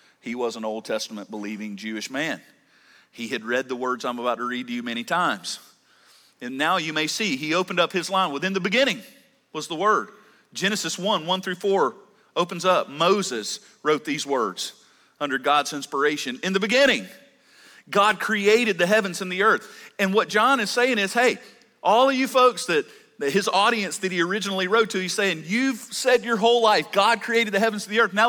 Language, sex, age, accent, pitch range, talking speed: English, male, 40-59, American, 175-230 Hz, 200 wpm